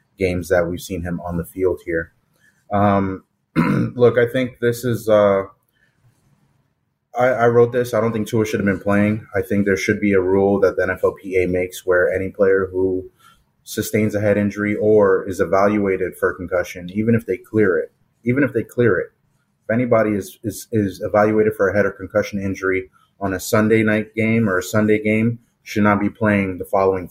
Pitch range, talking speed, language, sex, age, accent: 95-110 Hz, 195 wpm, English, male, 30-49, American